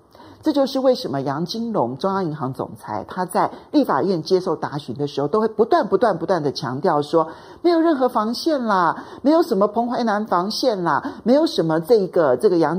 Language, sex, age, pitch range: Chinese, male, 50-69, 150-250 Hz